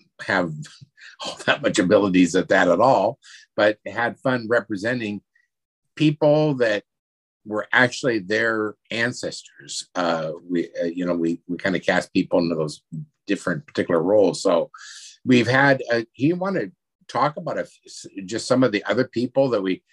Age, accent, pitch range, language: 50-69, American, 95-130 Hz, English